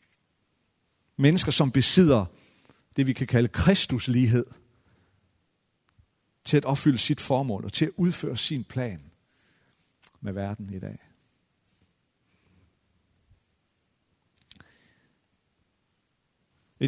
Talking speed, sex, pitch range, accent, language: 85 wpm, male, 100-145 Hz, native, Danish